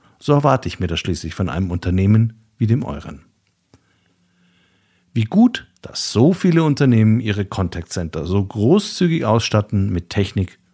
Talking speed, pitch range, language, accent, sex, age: 140 wpm, 95-135 Hz, German, German, male, 50-69